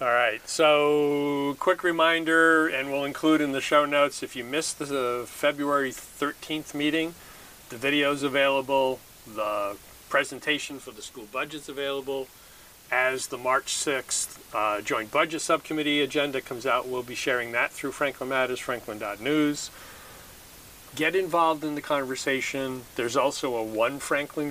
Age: 40-59